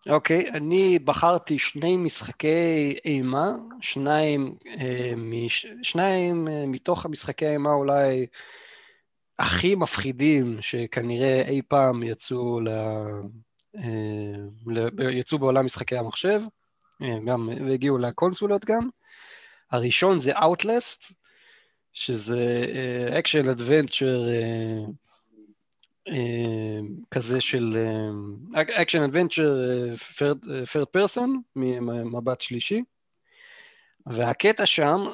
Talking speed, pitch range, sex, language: 85 wpm, 120-170 Hz, male, Hebrew